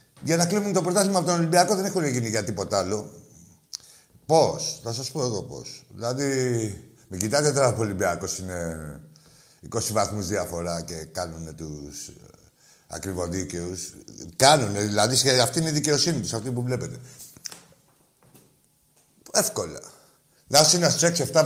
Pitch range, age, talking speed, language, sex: 110-170 Hz, 60-79, 140 wpm, Greek, male